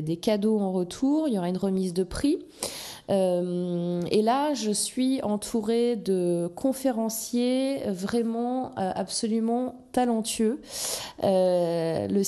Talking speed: 110 wpm